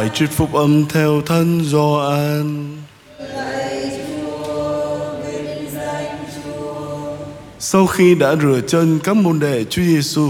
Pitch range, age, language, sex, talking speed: 120-155 Hz, 20-39, Vietnamese, male, 100 wpm